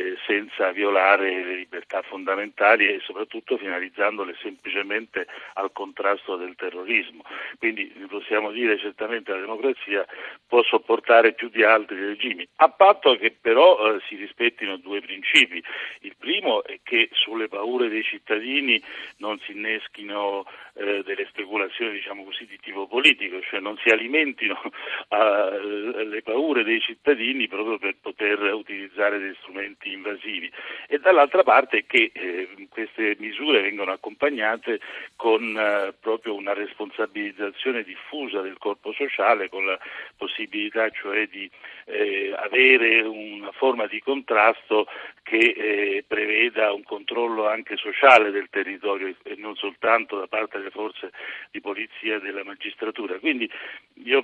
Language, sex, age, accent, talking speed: Italian, male, 60-79, native, 130 wpm